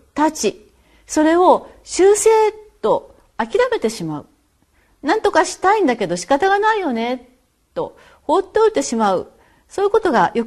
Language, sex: Japanese, female